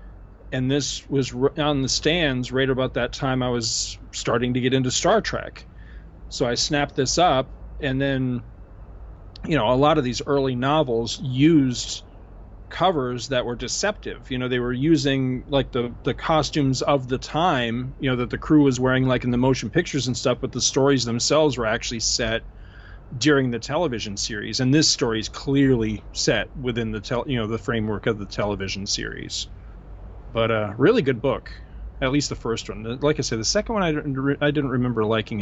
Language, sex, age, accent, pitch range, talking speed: English, male, 40-59, American, 110-135 Hz, 195 wpm